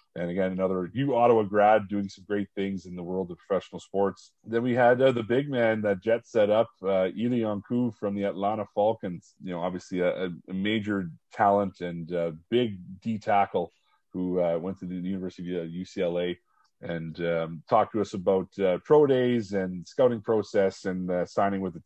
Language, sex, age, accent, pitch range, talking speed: English, male, 30-49, American, 90-110 Hz, 195 wpm